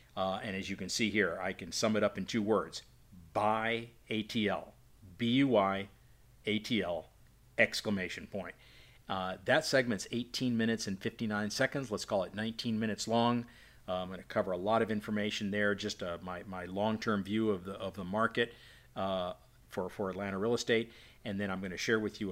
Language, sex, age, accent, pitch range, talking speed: English, male, 50-69, American, 95-115 Hz, 185 wpm